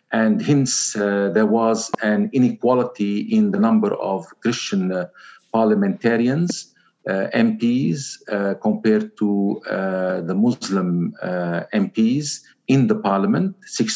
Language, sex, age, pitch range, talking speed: Arabic, male, 50-69, 100-140 Hz, 120 wpm